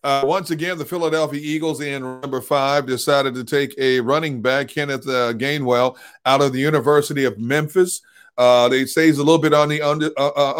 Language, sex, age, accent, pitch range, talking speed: English, male, 40-59, American, 135-160 Hz, 200 wpm